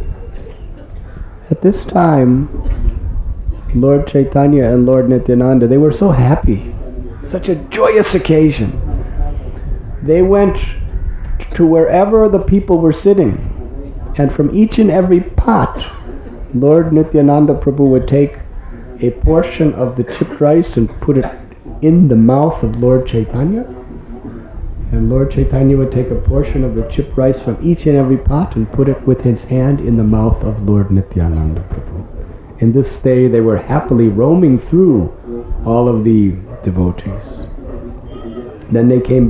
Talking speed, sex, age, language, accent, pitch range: 145 wpm, male, 50-69, English, American, 100-155 Hz